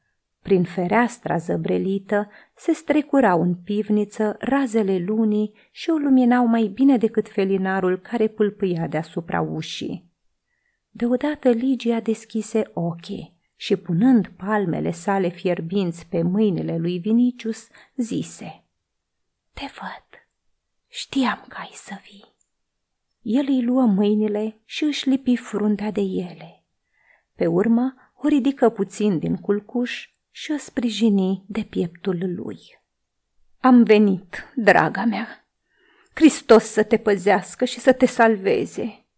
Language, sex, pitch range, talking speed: Romanian, female, 190-245 Hz, 115 wpm